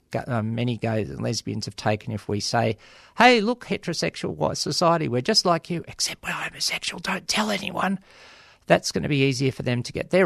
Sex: male